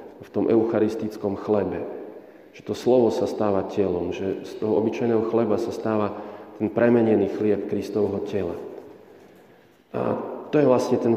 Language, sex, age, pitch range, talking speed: Slovak, male, 40-59, 105-125 Hz, 145 wpm